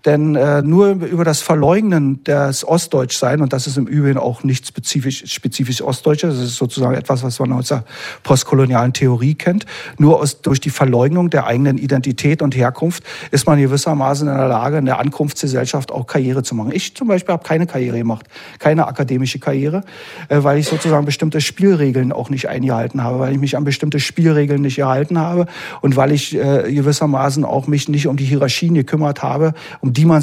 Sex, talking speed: male, 185 wpm